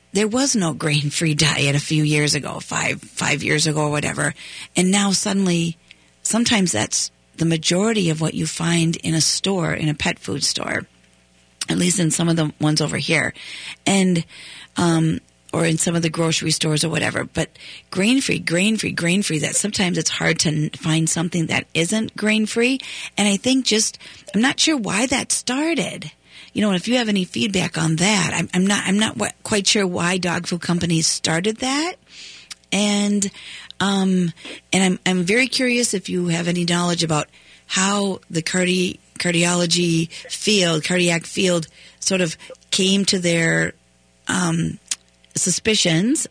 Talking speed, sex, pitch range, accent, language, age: 170 wpm, female, 160-205 Hz, American, English, 40-59